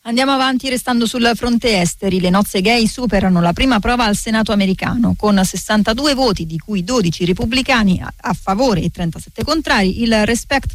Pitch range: 180-215 Hz